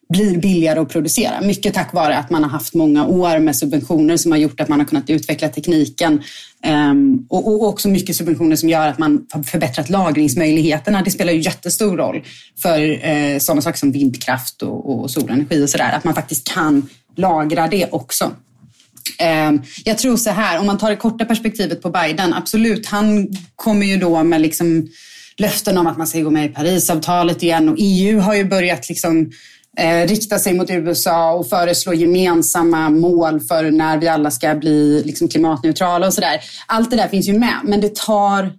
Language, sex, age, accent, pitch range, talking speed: Swedish, female, 30-49, native, 155-195 Hz, 180 wpm